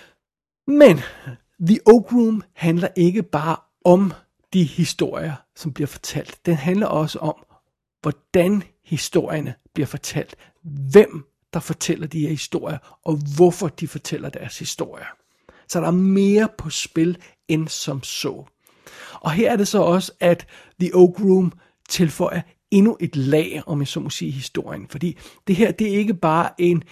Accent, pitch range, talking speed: native, 155-185 Hz, 155 wpm